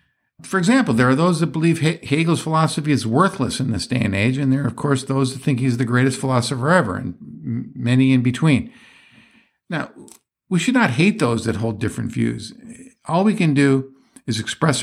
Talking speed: 200 wpm